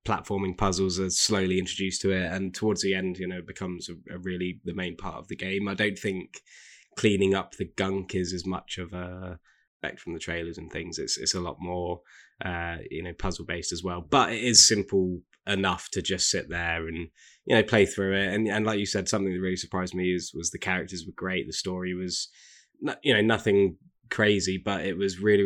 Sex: male